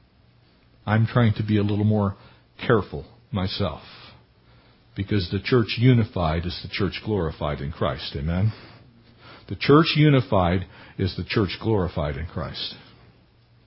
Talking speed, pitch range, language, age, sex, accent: 125 wpm, 95-135 Hz, English, 50-69, male, American